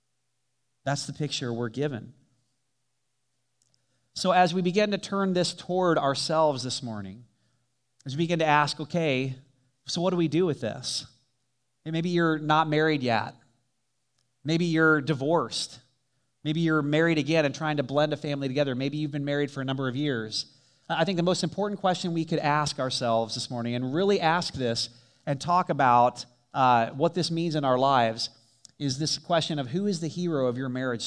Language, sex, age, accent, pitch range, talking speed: English, male, 30-49, American, 125-165 Hz, 180 wpm